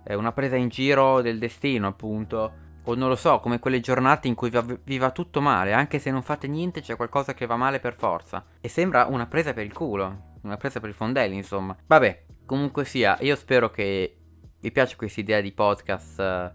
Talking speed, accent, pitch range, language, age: 215 wpm, native, 100-120 Hz, Italian, 20-39